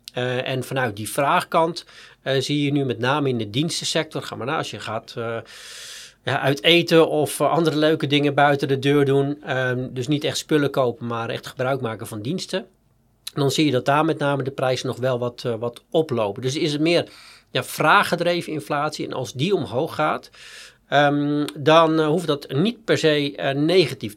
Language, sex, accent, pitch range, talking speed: Dutch, male, Dutch, 125-150 Hz, 195 wpm